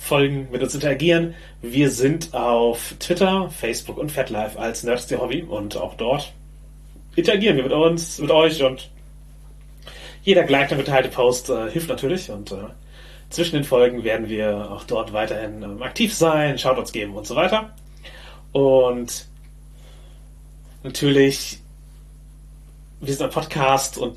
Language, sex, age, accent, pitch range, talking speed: German, male, 30-49, German, 120-150 Hz, 135 wpm